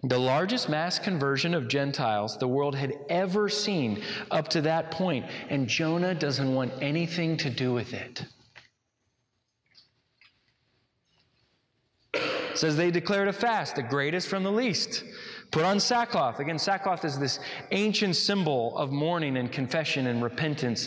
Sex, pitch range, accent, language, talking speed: male, 130-195 Hz, American, English, 145 wpm